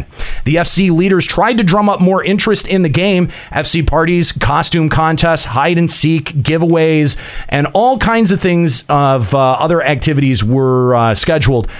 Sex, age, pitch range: male, 30-49, 130-180 Hz